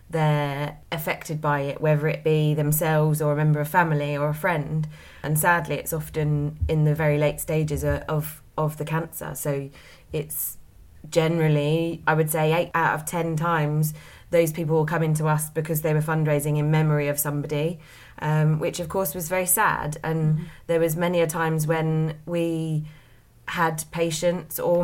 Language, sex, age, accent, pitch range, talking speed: English, female, 20-39, British, 155-175 Hz, 175 wpm